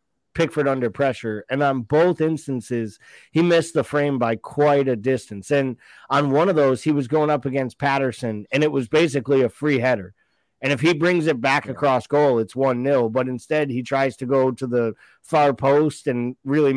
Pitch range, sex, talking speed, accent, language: 120-145 Hz, male, 200 wpm, American, English